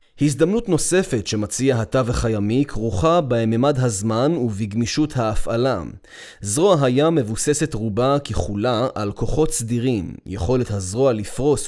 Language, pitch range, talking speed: Hebrew, 110-145 Hz, 110 wpm